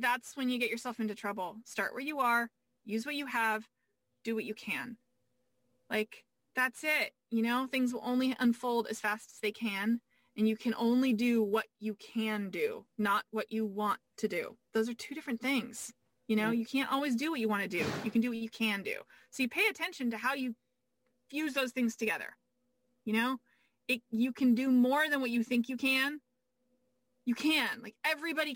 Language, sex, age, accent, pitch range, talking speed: English, female, 20-39, American, 220-255 Hz, 205 wpm